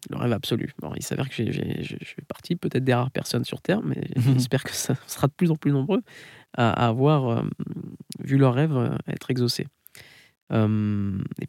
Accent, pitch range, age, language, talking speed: French, 120-150 Hz, 20-39, French, 190 wpm